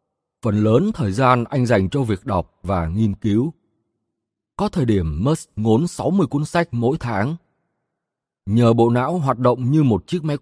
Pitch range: 100-155 Hz